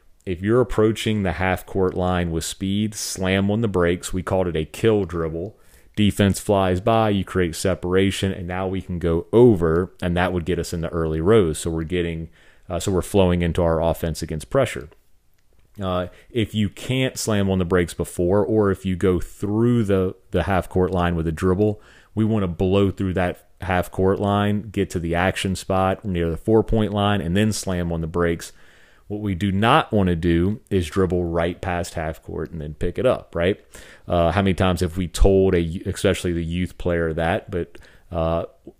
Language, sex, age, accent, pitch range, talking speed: English, male, 30-49, American, 85-100 Hz, 205 wpm